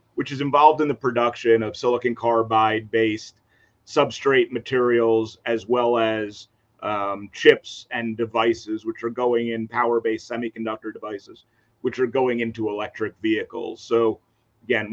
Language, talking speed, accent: English, 140 wpm, American